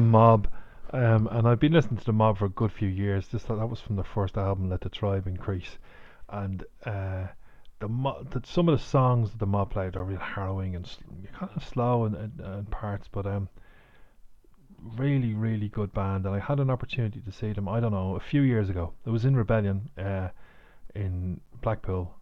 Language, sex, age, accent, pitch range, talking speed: English, male, 30-49, Irish, 95-115 Hz, 215 wpm